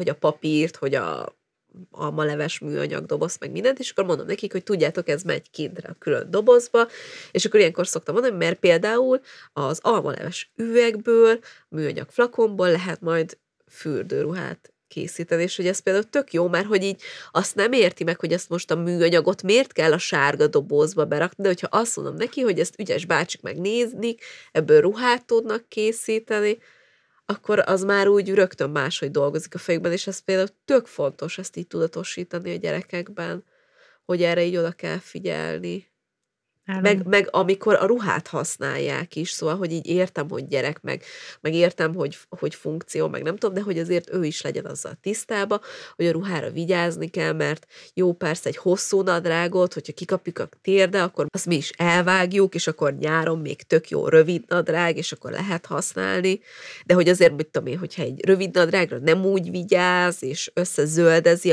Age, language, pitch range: 30-49, Hungarian, 165-205 Hz